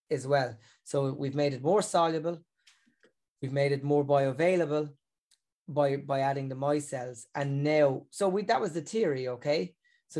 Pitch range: 140-165 Hz